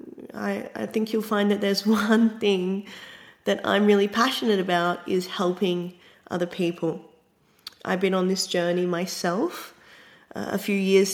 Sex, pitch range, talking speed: female, 180-215 Hz, 150 wpm